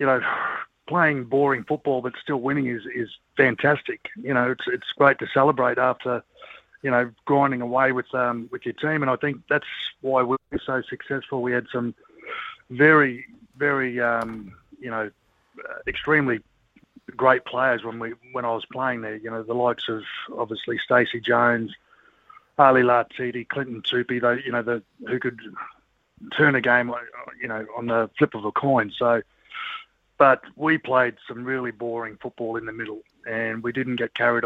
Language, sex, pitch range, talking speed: English, male, 120-135 Hz, 175 wpm